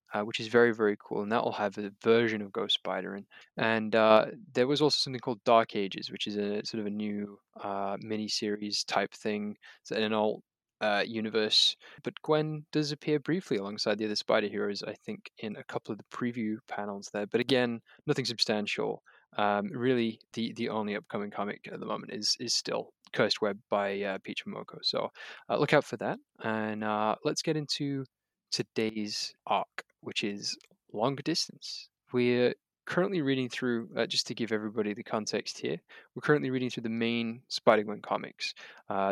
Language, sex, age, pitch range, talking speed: English, male, 20-39, 105-120 Hz, 190 wpm